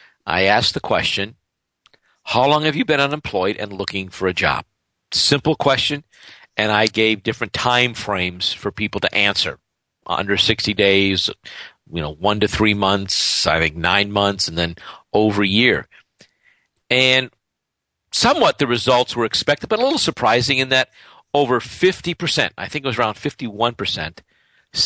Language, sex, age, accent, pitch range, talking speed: English, male, 50-69, American, 100-130 Hz, 155 wpm